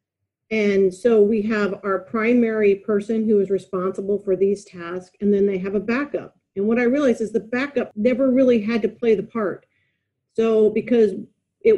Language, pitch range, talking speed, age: English, 195-235 Hz, 185 wpm, 40-59